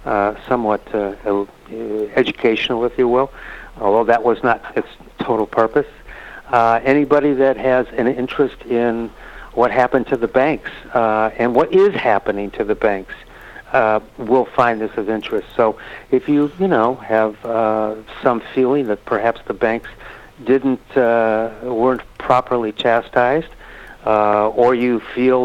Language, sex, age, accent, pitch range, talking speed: English, male, 60-79, American, 110-130 Hz, 145 wpm